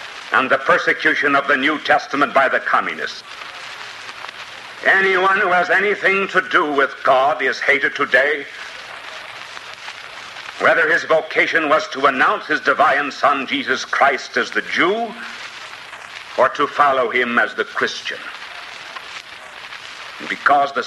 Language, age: English, 60-79